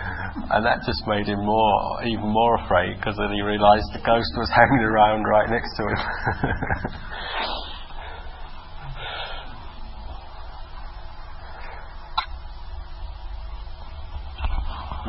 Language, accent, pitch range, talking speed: English, British, 85-105 Hz, 90 wpm